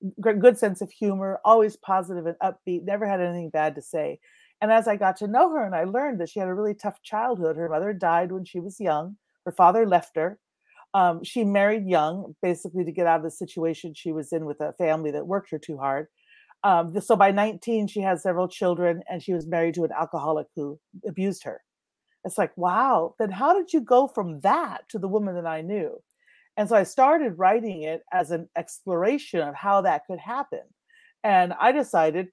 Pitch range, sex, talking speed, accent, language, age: 165-210 Hz, female, 215 wpm, American, English, 40-59